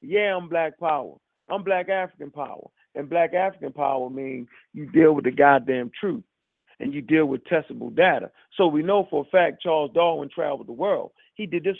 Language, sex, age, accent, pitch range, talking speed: English, male, 40-59, American, 160-200 Hz, 200 wpm